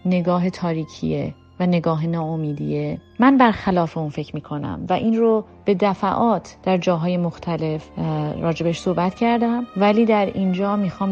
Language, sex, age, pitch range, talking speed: Persian, female, 30-49, 165-220 Hz, 135 wpm